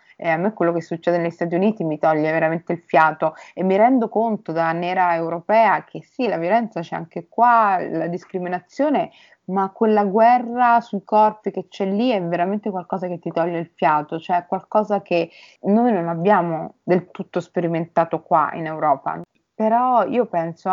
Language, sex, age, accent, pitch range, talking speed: Italian, female, 30-49, native, 165-200 Hz, 175 wpm